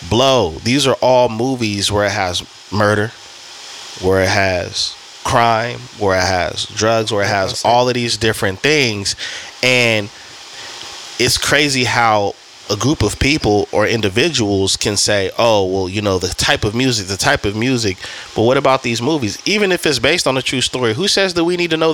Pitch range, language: 105-135 Hz, English